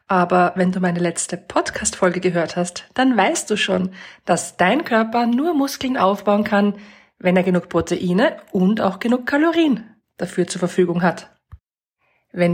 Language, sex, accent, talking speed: German, female, German, 155 wpm